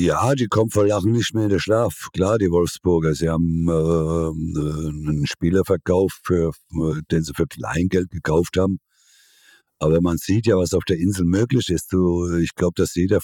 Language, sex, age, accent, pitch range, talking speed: German, male, 60-79, German, 80-95 Hz, 185 wpm